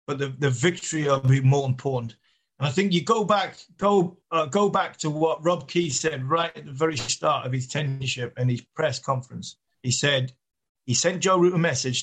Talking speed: 215 wpm